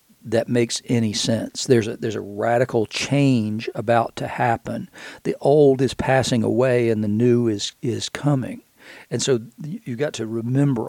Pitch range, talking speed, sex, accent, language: 115-130 Hz, 165 wpm, male, American, English